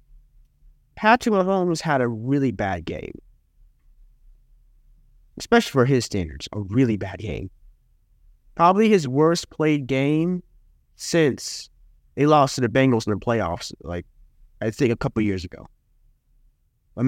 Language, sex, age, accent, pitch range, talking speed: English, male, 30-49, American, 110-170 Hz, 130 wpm